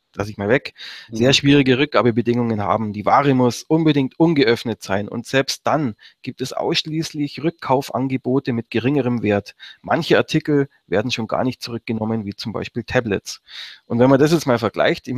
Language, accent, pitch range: German, German, 110-130 Hz